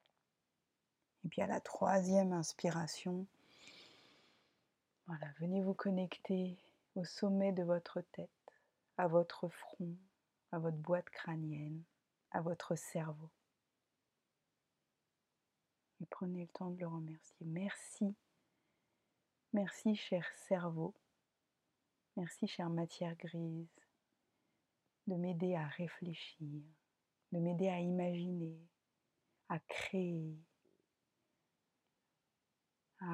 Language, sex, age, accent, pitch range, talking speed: French, female, 30-49, French, 170-190 Hz, 90 wpm